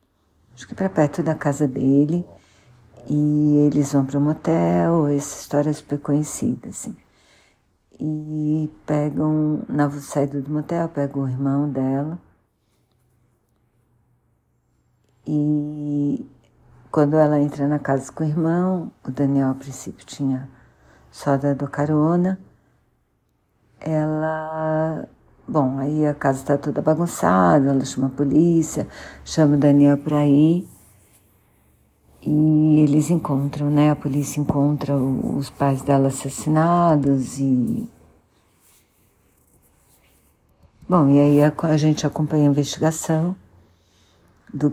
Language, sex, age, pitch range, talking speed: Portuguese, female, 60-79, 135-155 Hz, 115 wpm